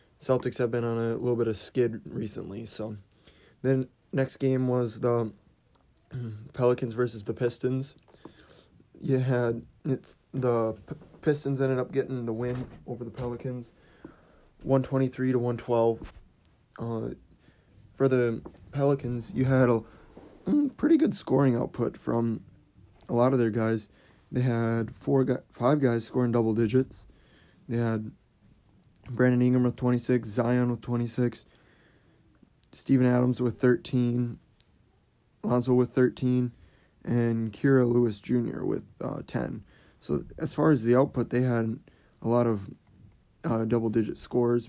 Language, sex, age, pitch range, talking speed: English, male, 20-39, 115-130 Hz, 135 wpm